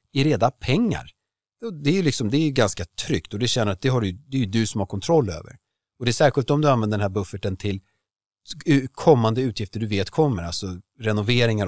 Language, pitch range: Swedish, 100-135 Hz